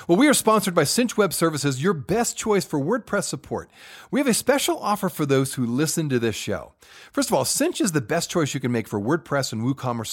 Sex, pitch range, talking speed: male, 125-190 Hz, 245 wpm